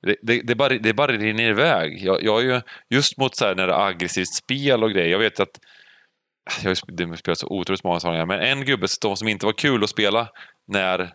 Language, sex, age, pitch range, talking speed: English, male, 30-49, 95-125 Hz, 235 wpm